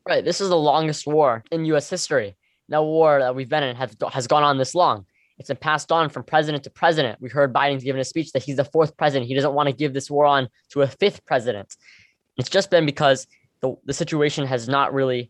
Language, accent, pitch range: English, American, 135-155 Hz